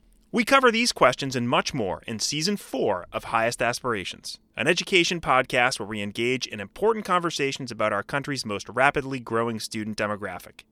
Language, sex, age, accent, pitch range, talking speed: English, male, 30-49, American, 110-175 Hz, 170 wpm